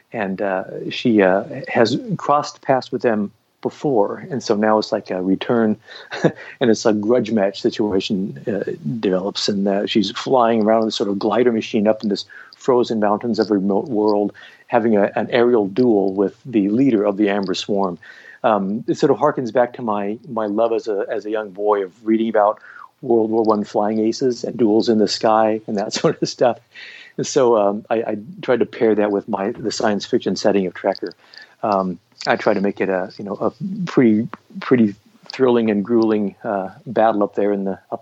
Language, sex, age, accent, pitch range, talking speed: English, male, 50-69, American, 100-115 Hz, 200 wpm